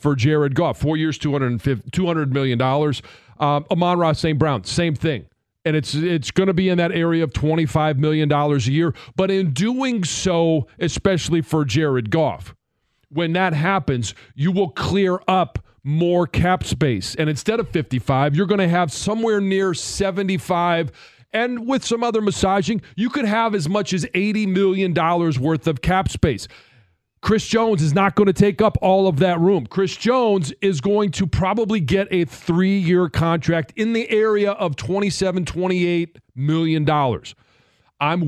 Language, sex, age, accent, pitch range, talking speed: English, male, 40-59, American, 145-190 Hz, 165 wpm